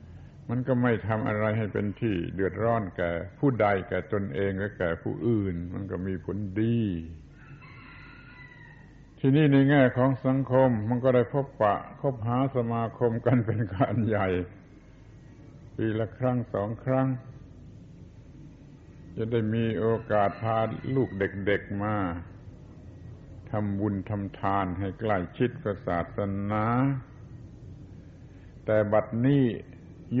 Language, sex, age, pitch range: Thai, male, 60-79, 100-125 Hz